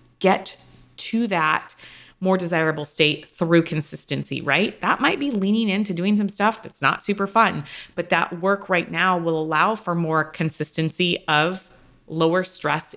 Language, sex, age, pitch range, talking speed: English, female, 20-39, 165-200 Hz, 155 wpm